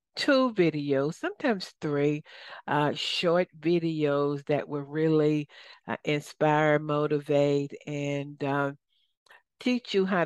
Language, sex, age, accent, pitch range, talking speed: English, female, 60-79, American, 145-165 Hz, 105 wpm